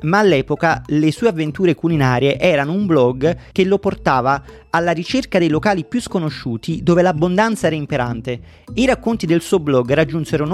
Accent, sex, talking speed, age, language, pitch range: native, male, 165 wpm, 30-49, Italian, 130-185 Hz